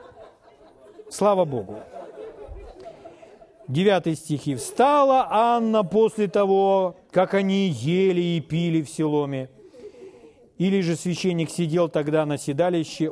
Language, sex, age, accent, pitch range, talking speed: Russian, male, 40-59, native, 155-230 Hz, 100 wpm